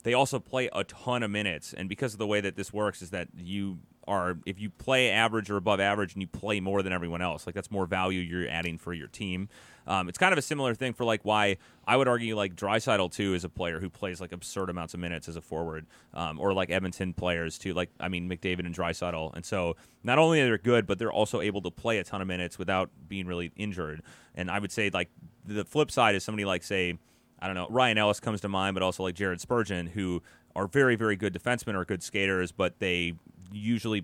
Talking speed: 250 wpm